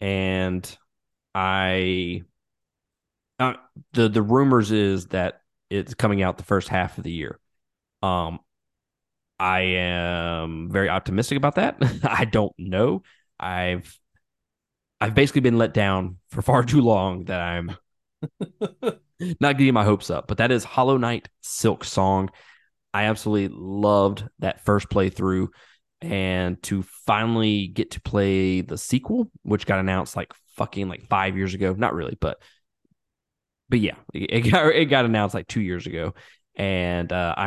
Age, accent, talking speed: 20-39, American, 145 wpm